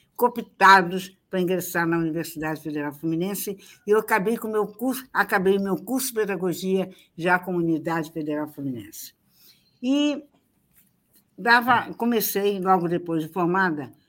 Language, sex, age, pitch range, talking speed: Portuguese, female, 60-79, 160-205 Hz, 130 wpm